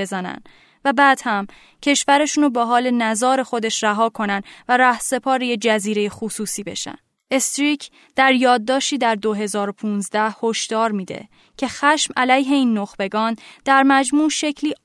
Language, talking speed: Persian, 125 wpm